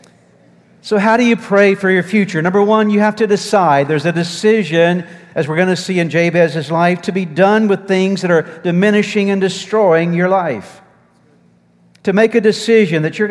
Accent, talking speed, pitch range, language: American, 195 wpm, 160-200 Hz, English